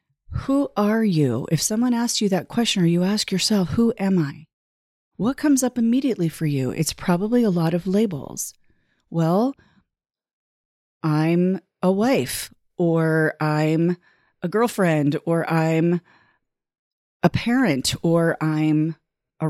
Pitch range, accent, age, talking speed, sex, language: 155-195 Hz, American, 40-59, 130 wpm, female, English